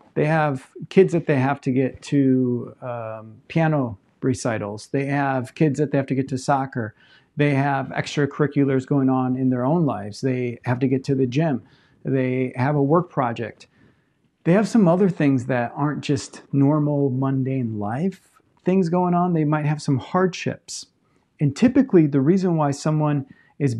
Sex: male